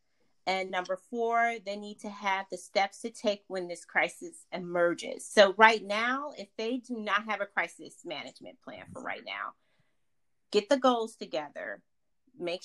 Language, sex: English, female